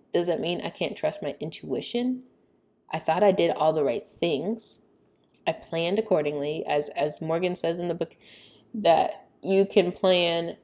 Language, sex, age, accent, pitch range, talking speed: English, female, 10-29, American, 160-210 Hz, 170 wpm